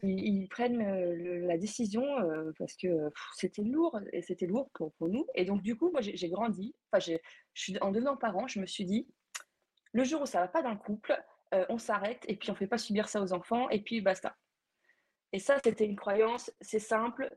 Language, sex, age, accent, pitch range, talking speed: French, female, 20-39, French, 175-220 Hz, 205 wpm